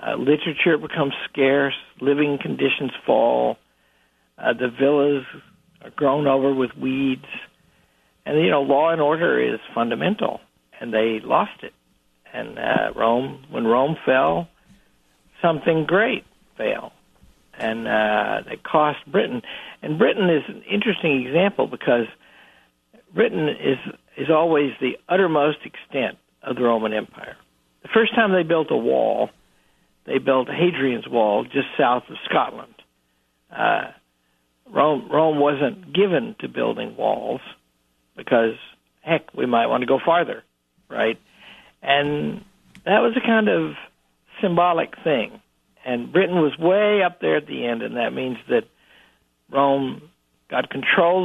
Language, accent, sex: English, American, male